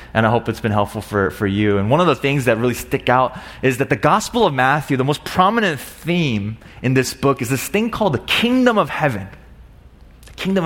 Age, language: 30-49, English